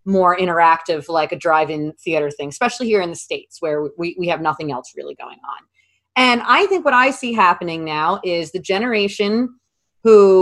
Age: 30-49